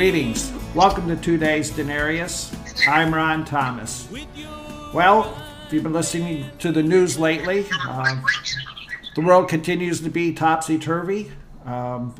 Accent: American